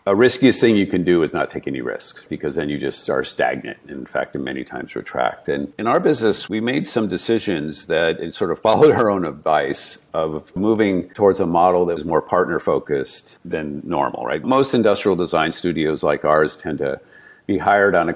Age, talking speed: 50-69, 205 wpm